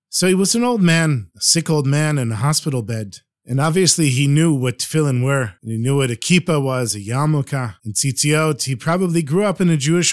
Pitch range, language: 130-185 Hz, English